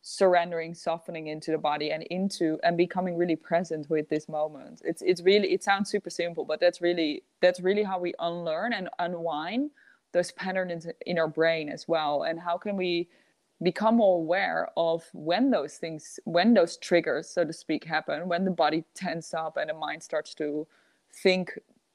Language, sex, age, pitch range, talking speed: English, female, 20-39, 165-195 Hz, 185 wpm